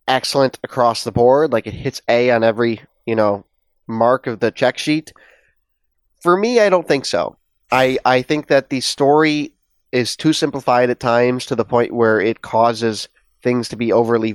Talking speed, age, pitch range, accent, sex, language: 185 wpm, 30-49, 110-140 Hz, American, male, English